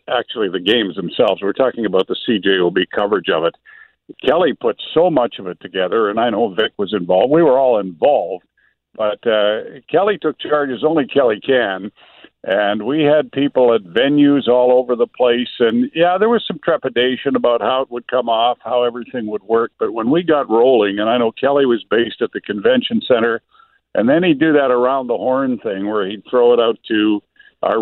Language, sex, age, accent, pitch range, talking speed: English, male, 50-69, American, 105-145 Hz, 205 wpm